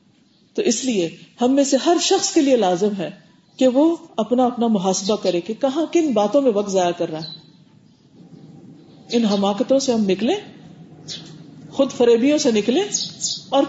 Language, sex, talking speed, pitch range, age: Urdu, female, 165 wpm, 185-275 Hz, 40-59